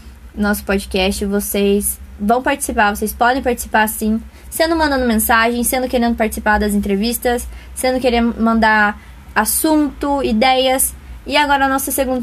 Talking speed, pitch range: 130 wpm, 205-250 Hz